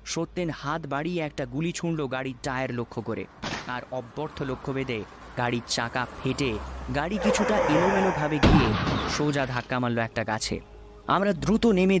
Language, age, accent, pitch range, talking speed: Bengali, 20-39, native, 120-155 Hz, 95 wpm